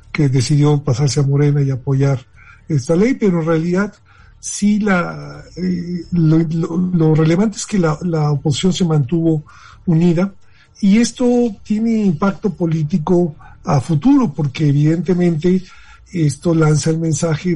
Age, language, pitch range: 50-69, Spanish, 135-165 Hz